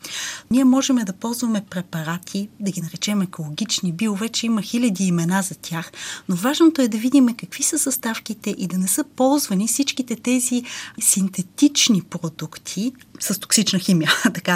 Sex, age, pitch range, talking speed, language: female, 30-49, 180-250 Hz, 150 wpm, Bulgarian